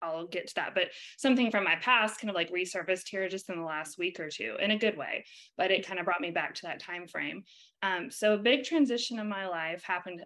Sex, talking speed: female, 265 wpm